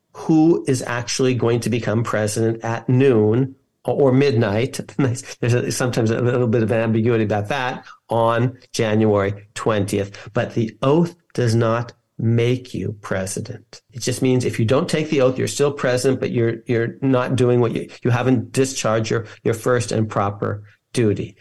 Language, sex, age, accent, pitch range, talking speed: English, male, 50-69, American, 115-145 Hz, 165 wpm